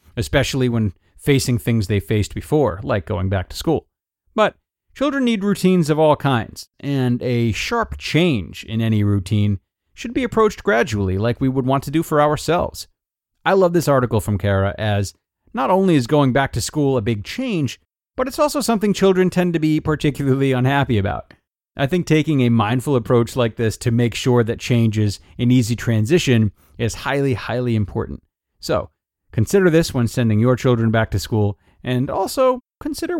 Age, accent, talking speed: 40-59, American, 180 wpm